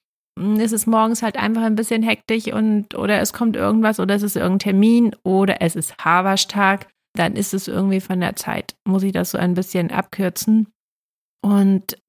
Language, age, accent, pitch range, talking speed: German, 30-49, German, 185-220 Hz, 185 wpm